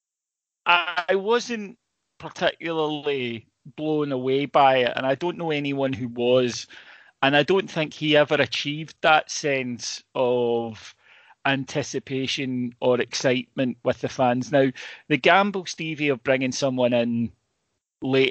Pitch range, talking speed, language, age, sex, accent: 120-155 Hz, 130 wpm, English, 30-49, male, British